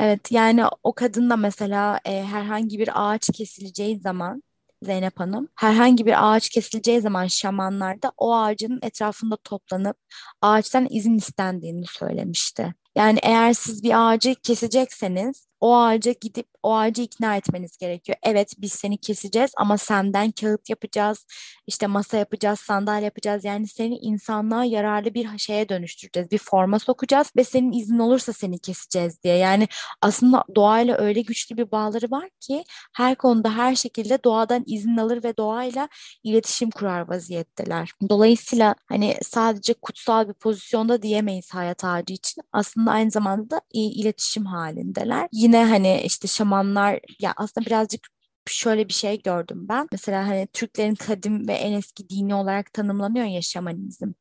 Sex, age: female, 20-39